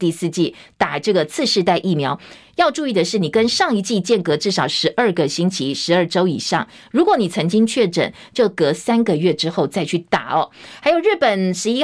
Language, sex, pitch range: Chinese, female, 185-260 Hz